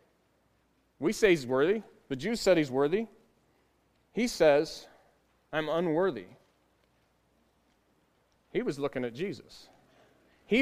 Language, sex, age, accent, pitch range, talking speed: English, male, 30-49, American, 140-185 Hz, 105 wpm